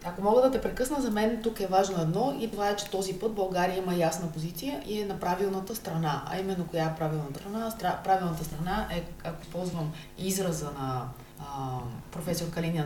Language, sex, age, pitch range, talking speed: Bulgarian, female, 30-49, 155-200 Hz, 190 wpm